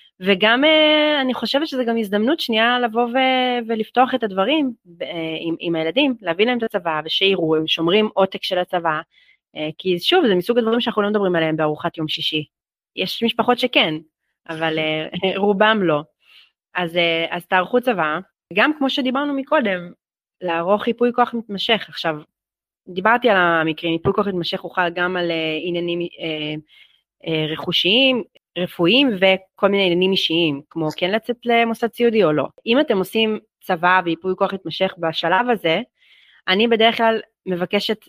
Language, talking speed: Hebrew, 145 wpm